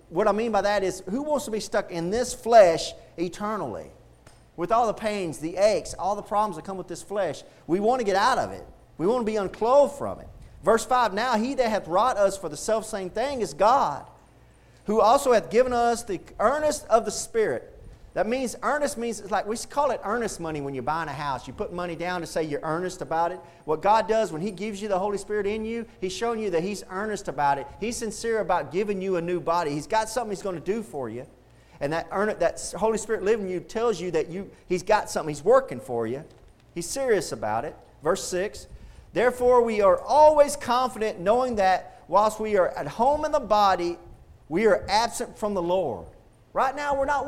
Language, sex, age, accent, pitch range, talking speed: English, male, 40-59, American, 180-235 Hz, 230 wpm